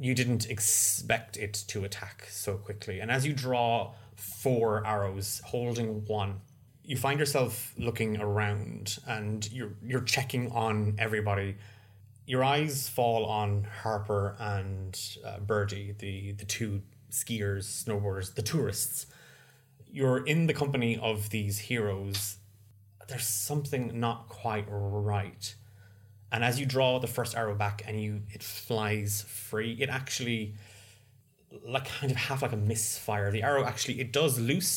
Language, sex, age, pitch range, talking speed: English, male, 20-39, 105-125 Hz, 140 wpm